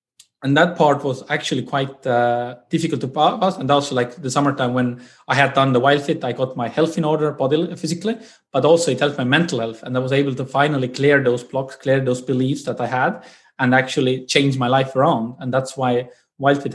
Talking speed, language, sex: 220 wpm, English, male